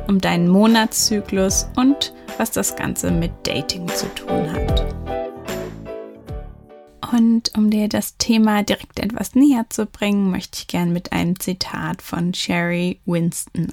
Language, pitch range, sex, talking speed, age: German, 170-225 Hz, female, 135 wpm, 20-39